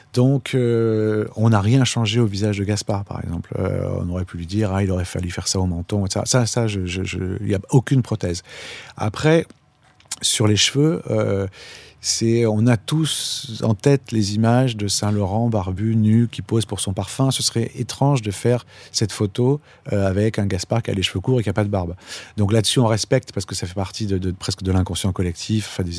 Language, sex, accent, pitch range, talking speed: French, male, French, 95-120 Hz, 225 wpm